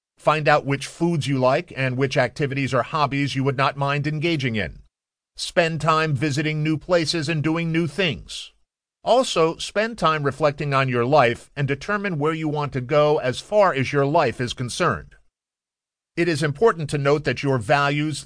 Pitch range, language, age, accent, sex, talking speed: 130-160 Hz, English, 50-69, American, male, 180 wpm